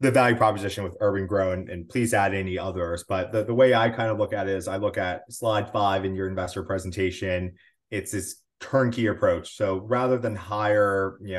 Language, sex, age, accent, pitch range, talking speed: English, male, 30-49, American, 95-110 Hz, 215 wpm